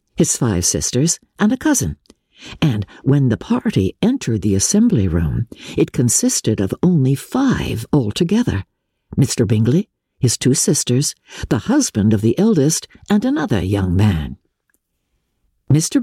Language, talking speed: English, 130 wpm